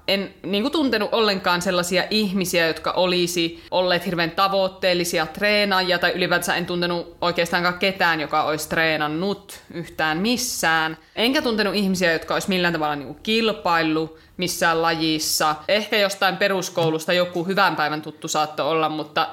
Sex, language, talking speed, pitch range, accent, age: female, Finnish, 130 wpm, 170-200 Hz, native, 20-39